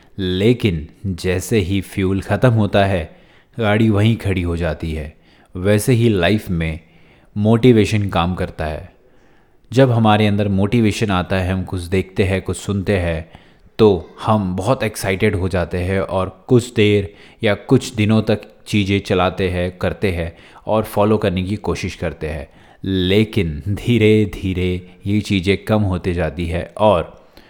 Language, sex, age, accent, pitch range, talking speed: Hindi, male, 20-39, native, 90-105 Hz, 155 wpm